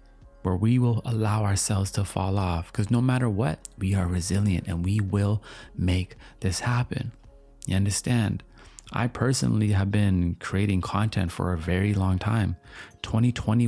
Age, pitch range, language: 30-49, 95-115 Hz, English